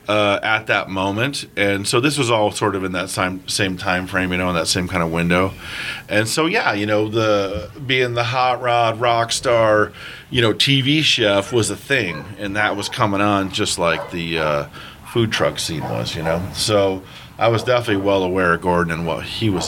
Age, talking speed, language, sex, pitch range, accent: 40-59, 215 wpm, English, male, 95-110 Hz, American